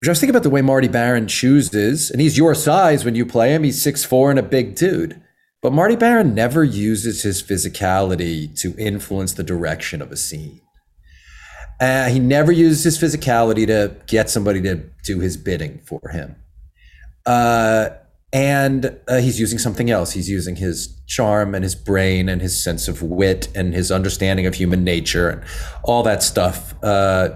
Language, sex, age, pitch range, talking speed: English, male, 40-59, 95-130 Hz, 180 wpm